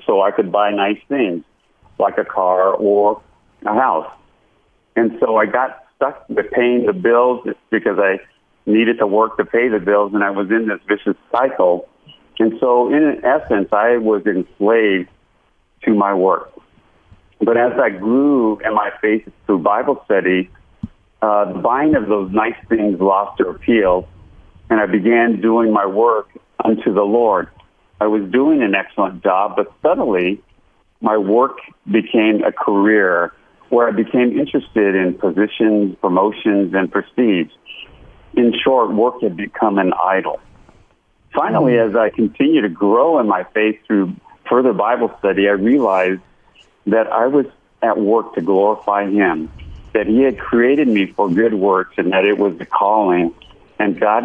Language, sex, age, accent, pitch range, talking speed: English, male, 50-69, American, 95-110 Hz, 160 wpm